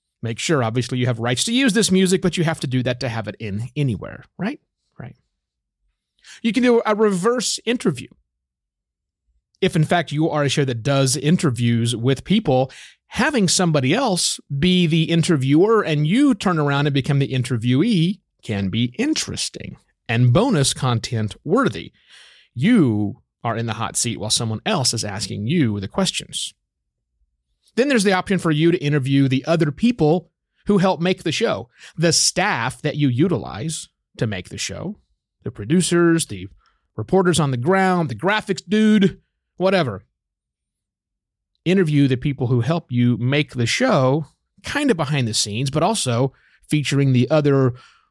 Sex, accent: male, American